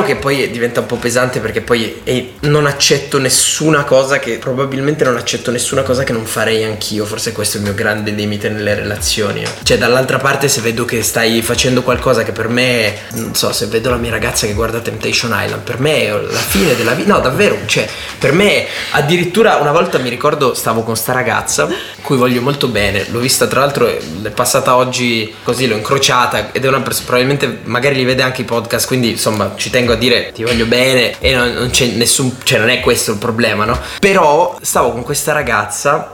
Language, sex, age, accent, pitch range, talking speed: Italian, male, 20-39, native, 115-150 Hz, 210 wpm